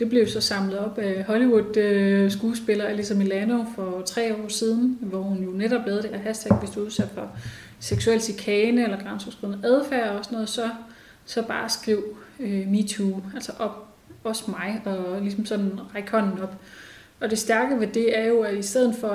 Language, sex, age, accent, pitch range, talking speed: Danish, female, 30-49, native, 195-225 Hz, 185 wpm